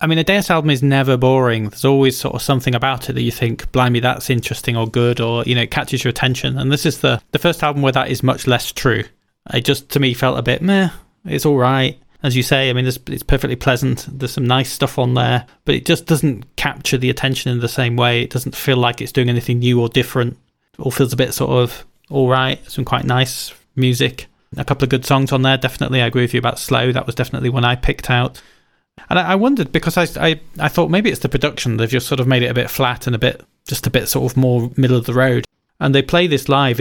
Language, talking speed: English, 265 wpm